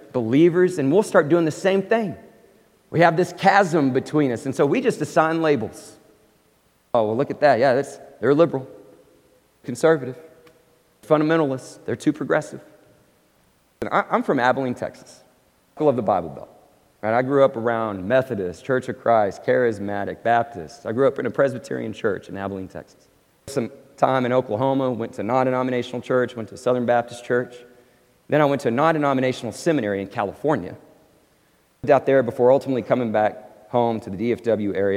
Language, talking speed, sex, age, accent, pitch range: English, 170 wpm, male, 40-59, American, 105-140 Hz